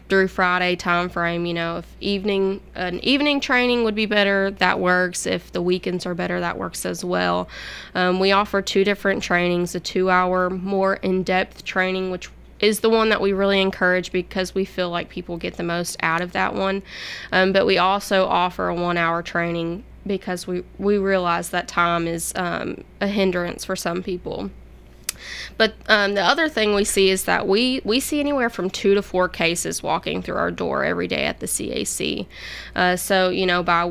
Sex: female